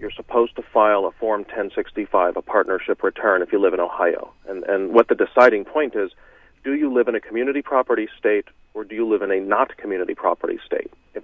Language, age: English, 40-59